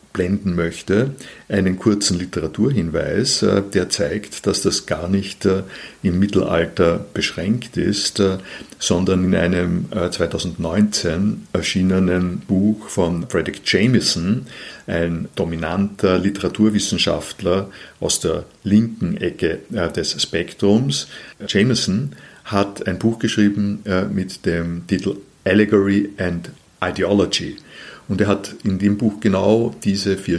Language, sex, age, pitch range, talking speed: German, male, 50-69, 90-105 Hz, 105 wpm